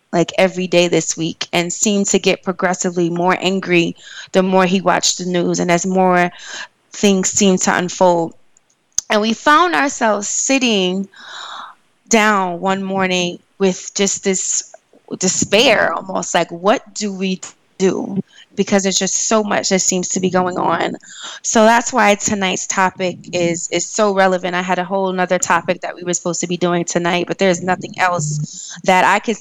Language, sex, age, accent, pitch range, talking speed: English, female, 20-39, American, 175-205 Hz, 170 wpm